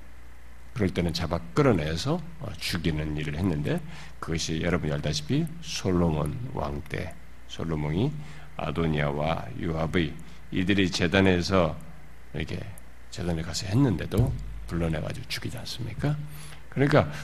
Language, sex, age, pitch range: Korean, male, 50-69, 80-130 Hz